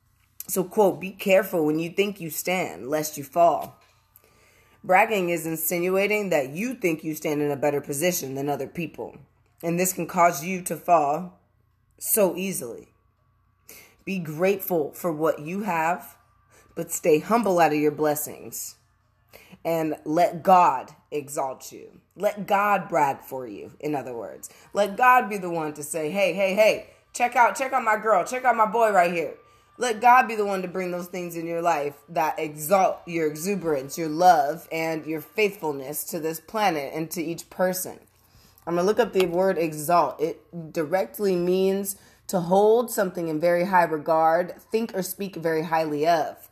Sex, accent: female, American